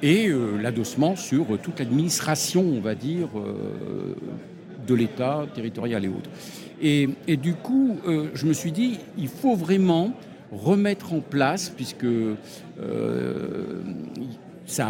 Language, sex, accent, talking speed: French, male, French, 135 wpm